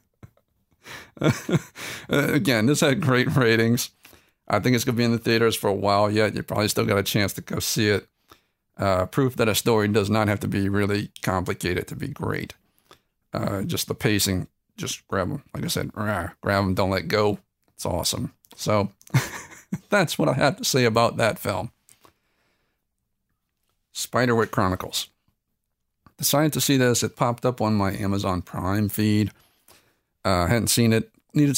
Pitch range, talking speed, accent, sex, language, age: 100-120 Hz, 170 wpm, American, male, English, 50-69